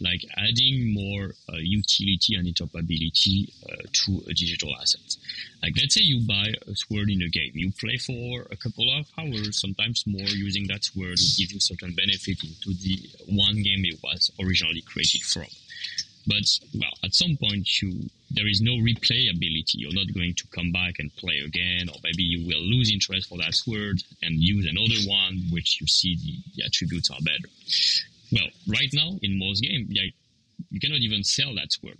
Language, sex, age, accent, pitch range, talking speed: English, male, 30-49, French, 85-115 Hz, 190 wpm